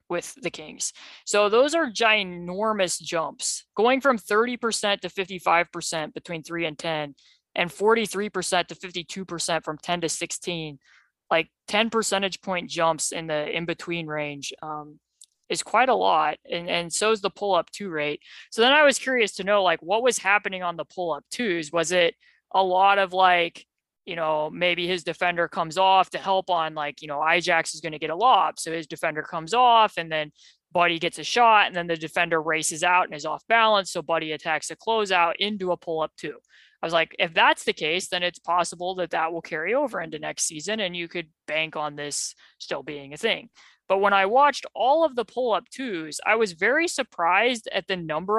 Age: 20-39